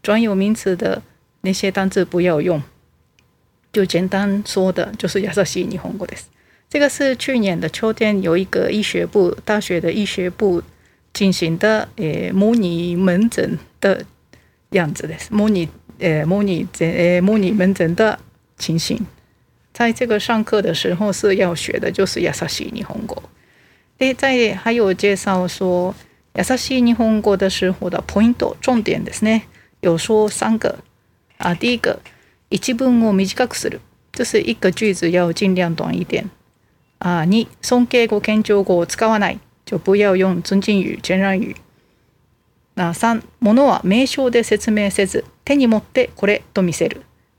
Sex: female